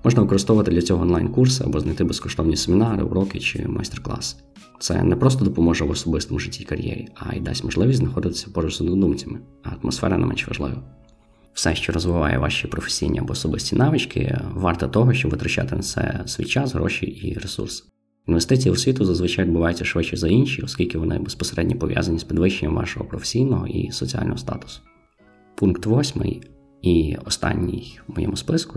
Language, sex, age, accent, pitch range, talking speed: Ukrainian, male, 20-39, native, 85-110 Hz, 165 wpm